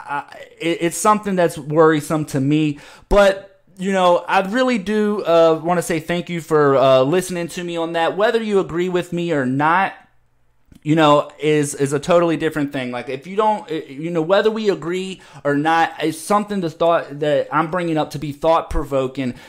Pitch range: 150-180 Hz